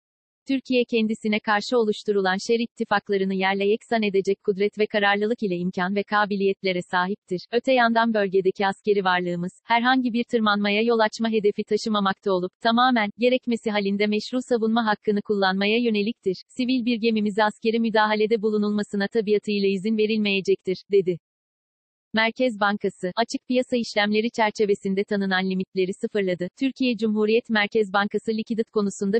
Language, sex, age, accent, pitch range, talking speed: Turkish, female, 40-59, native, 200-225 Hz, 130 wpm